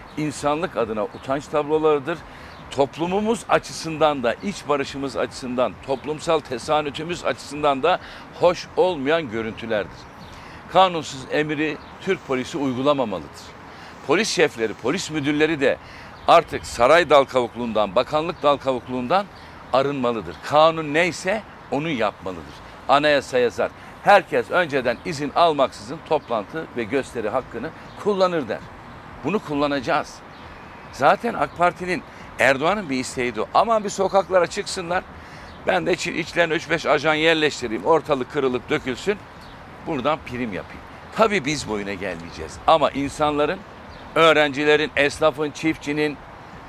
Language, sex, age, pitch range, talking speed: Turkish, male, 60-79, 130-160 Hz, 105 wpm